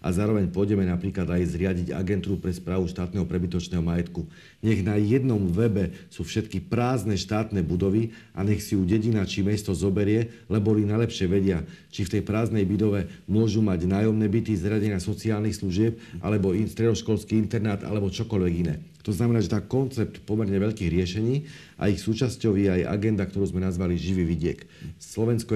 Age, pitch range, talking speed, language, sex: 50-69, 95-110 Hz, 170 wpm, Slovak, male